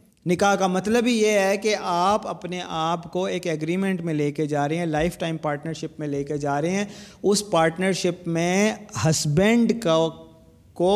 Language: Urdu